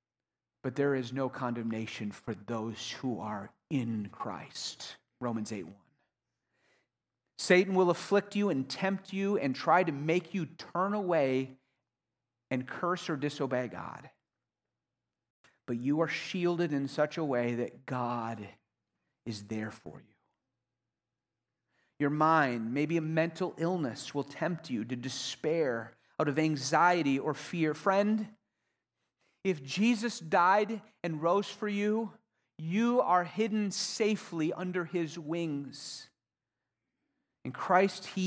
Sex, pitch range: male, 125-185 Hz